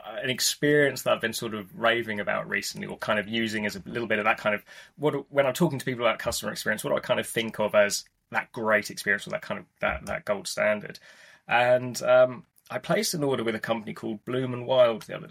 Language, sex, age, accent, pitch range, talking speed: English, male, 20-39, British, 115-155 Hz, 260 wpm